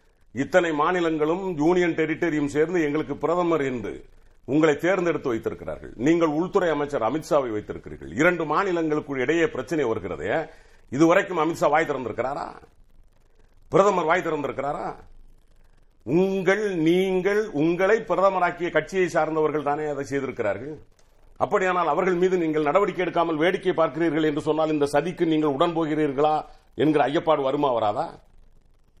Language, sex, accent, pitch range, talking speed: Tamil, male, native, 150-180 Hz, 115 wpm